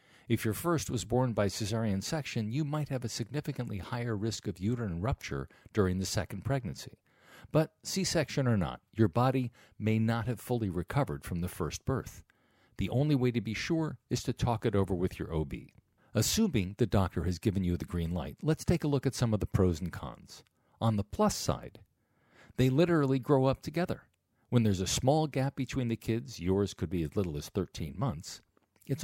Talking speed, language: 200 wpm, English